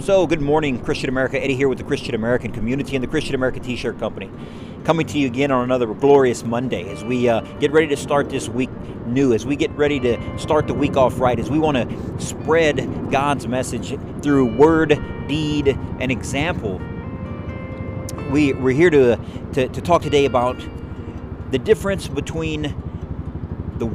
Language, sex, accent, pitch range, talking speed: English, male, American, 110-140 Hz, 180 wpm